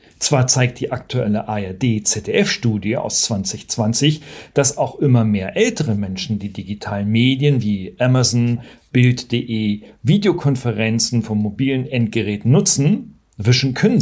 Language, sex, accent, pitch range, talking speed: German, male, German, 110-150 Hz, 110 wpm